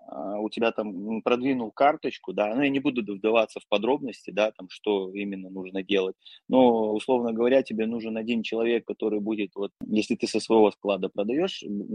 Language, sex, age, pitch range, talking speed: Russian, male, 20-39, 100-115 Hz, 175 wpm